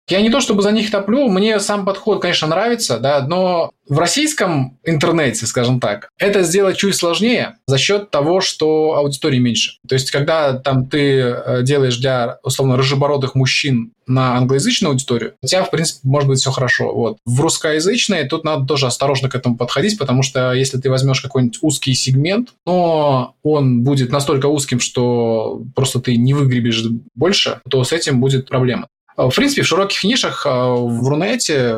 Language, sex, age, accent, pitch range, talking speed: Russian, male, 20-39, native, 125-160 Hz, 170 wpm